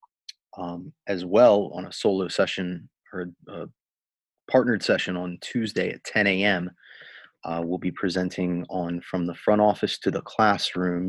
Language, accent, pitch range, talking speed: English, American, 90-95 Hz, 145 wpm